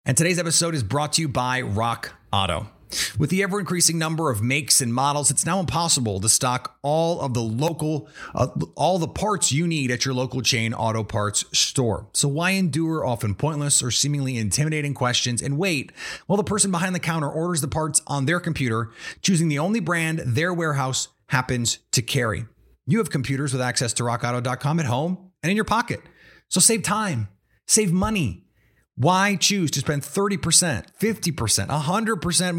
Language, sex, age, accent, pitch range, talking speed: English, male, 30-49, American, 120-170 Hz, 180 wpm